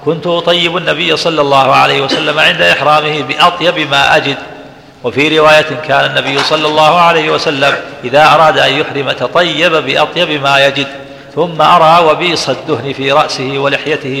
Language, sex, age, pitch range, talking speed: Arabic, male, 50-69, 140-165 Hz, 150 wpm